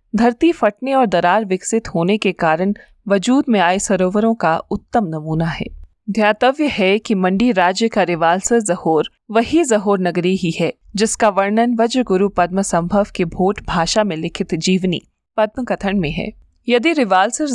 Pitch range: 185-225 Hz